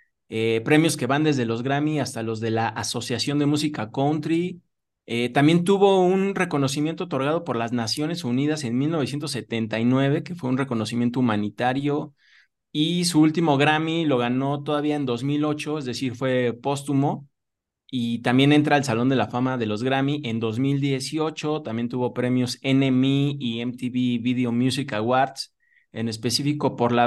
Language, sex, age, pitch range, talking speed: Spanish, male, 20-39, 120-145 Hz, 155 wpm